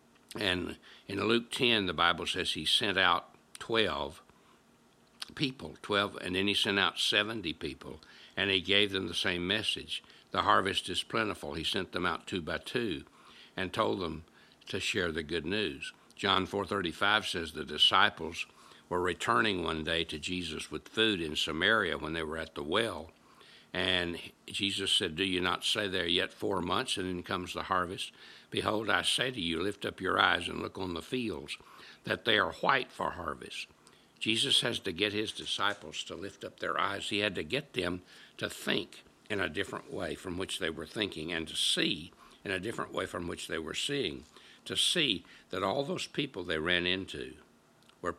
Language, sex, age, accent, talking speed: English, male, 60-79, American, 190 wpm